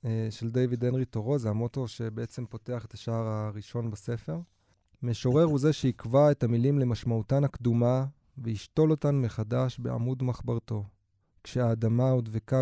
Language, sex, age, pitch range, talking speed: Hebrew, male, 20-39, 110-130 Hz, 140 wpm